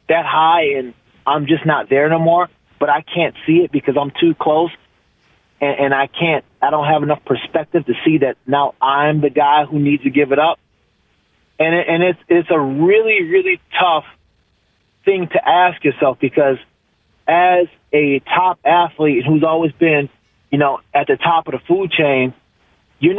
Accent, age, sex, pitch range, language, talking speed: American, 30-49, male, 145-180 Hz, English, 180 wpm